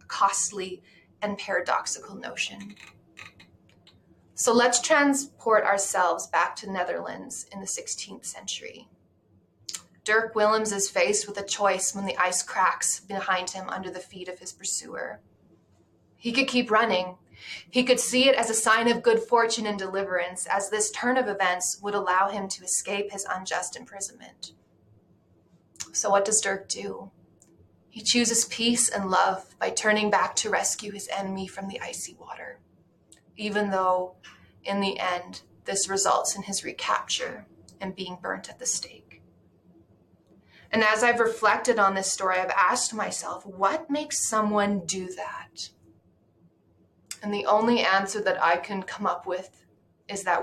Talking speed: 150 wpm